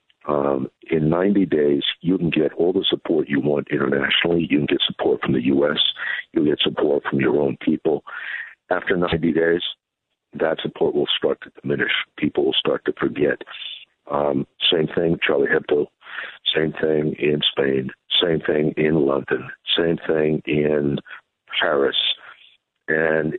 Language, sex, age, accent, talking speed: English, male, 60-79, American, 150 wpm